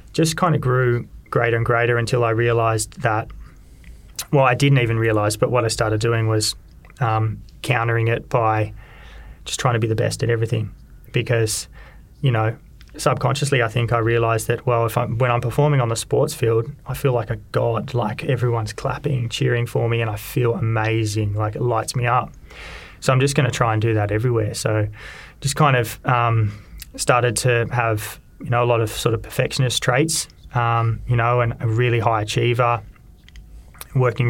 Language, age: English, 20-39